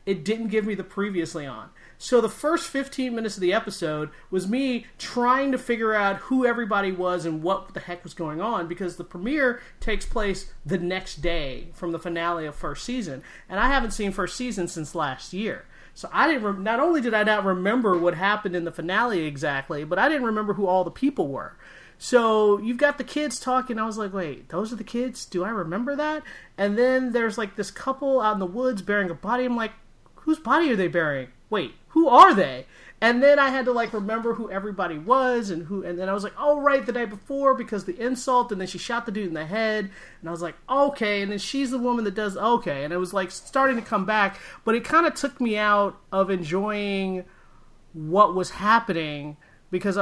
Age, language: 40-59, English